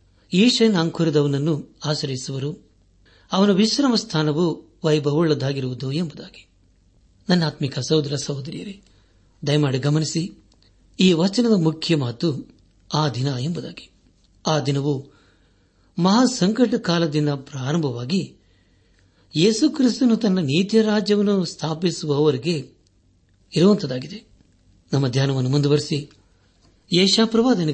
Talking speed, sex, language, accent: 75 wpm, male, Kannada, native